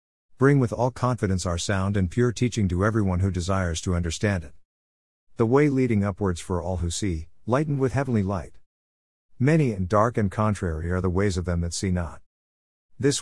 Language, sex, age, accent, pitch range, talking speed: English, male, 50-69, American, 85-120 Hz, 190 wpm